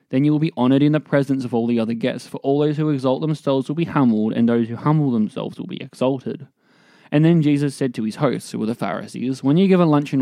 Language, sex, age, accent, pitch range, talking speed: English, male, 20-39, Australian, 115-145 Hz, 270 wpm